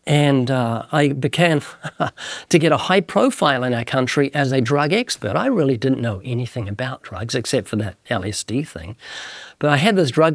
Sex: male